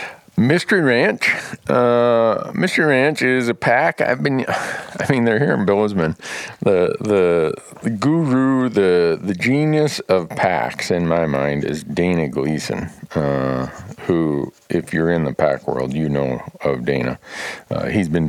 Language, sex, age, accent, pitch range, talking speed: English, male, 50-69, American, 80-120 Hz, 150 wpm